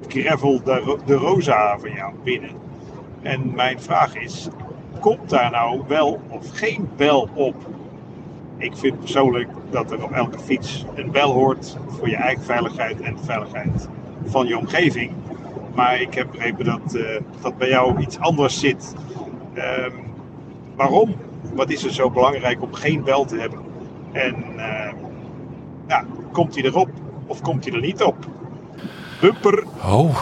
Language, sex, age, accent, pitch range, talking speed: Dutch, male, 50-69, Dutch, 120-145 Hz, 150 wpm